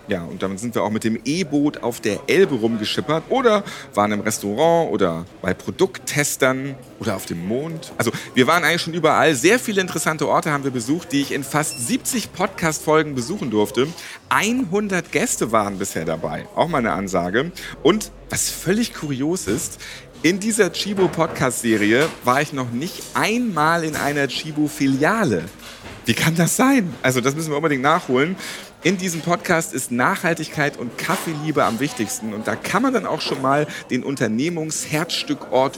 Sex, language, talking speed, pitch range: male, German, 170 wpm, 125-175 Hz